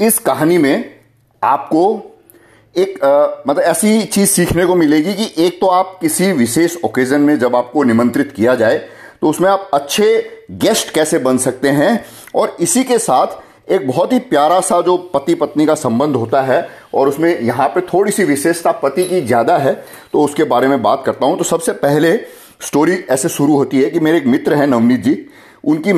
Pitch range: 125-180 Hz